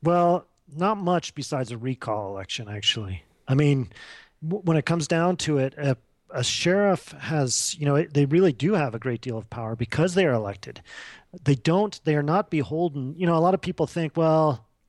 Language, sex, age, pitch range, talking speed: English, male, 40-59, 125-160 Hz, 200 wpm